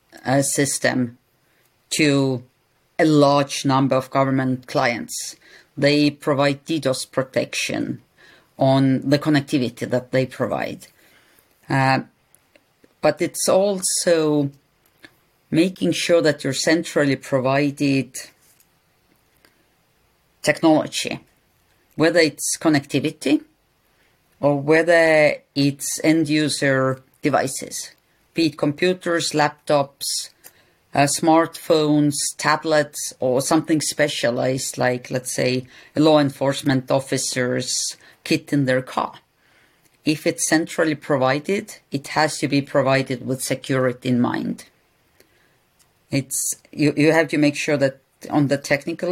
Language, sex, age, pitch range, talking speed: Ukrainian, female, 40-59, 135-155 Hz, 100 wpm